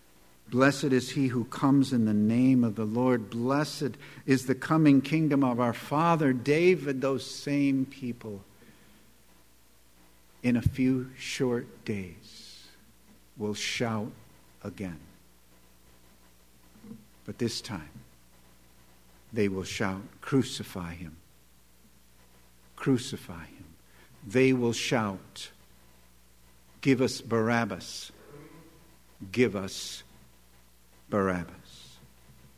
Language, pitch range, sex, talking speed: English, 100-145 Hz, male, 90 wpm